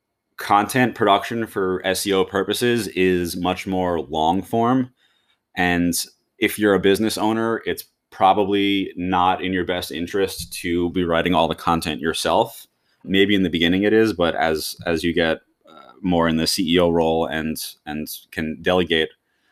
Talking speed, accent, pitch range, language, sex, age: 155 wpm, American, 85-100 Hz, English, male, 20-39